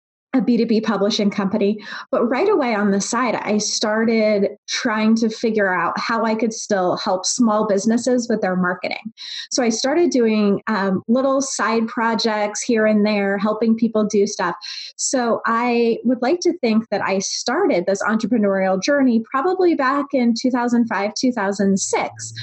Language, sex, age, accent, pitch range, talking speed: English, female, 30-49, American, 200-245 Hz, 155 wpm